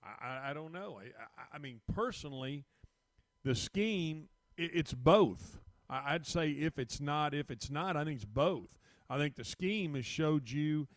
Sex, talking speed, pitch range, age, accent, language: male, 185 wpm, 130-165 Hz, 40-59, American, English